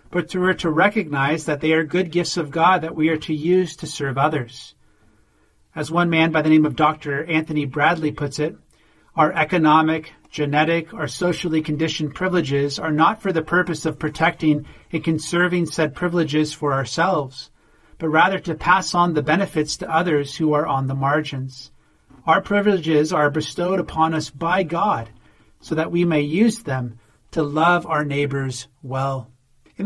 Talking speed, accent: 175 wpm, American